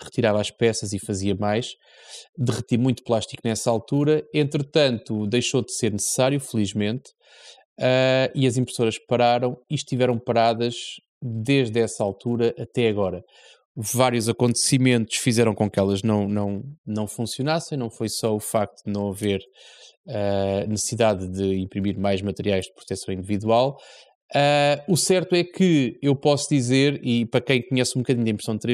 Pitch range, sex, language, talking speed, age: 110-130 Hz, male, Portuguese, 145 wpm, 20-39